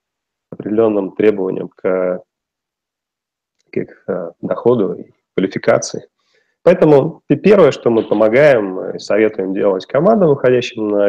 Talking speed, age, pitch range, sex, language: 95 wpm, 30-49, 100-145 Hz, male, Russian